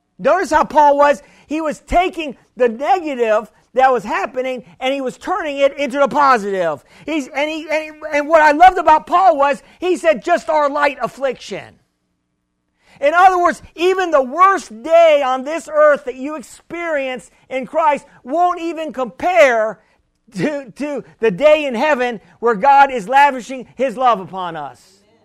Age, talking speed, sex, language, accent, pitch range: 50-69, 155 wpm, male, English, American, 230-310 Hz